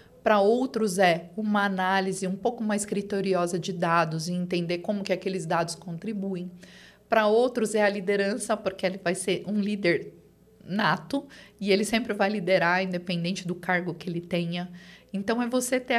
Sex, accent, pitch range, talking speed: female, Brazilian, 185-240 Hz, 170 wpm